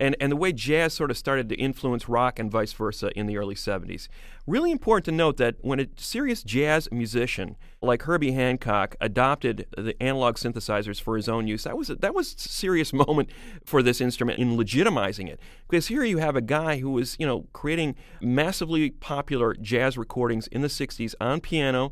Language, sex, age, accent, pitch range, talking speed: English, male, 40-59, American, 115-145 Hz, 200 wpm